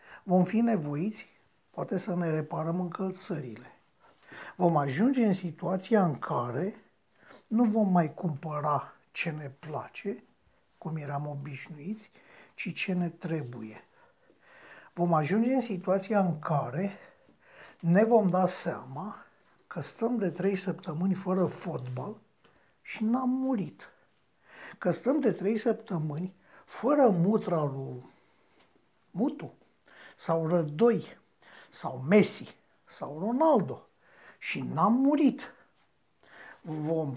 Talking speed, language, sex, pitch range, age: 110 wpm, Romanian, male, 165-220 Hz, 60-79